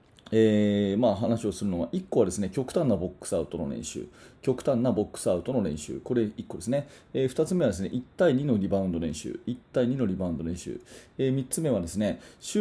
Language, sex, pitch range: Japanese, male, 100-150 Hz